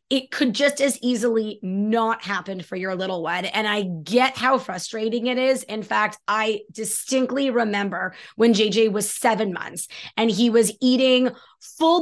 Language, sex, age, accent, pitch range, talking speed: English, female, 20-39, American, 210-260 Hz, 165 wpm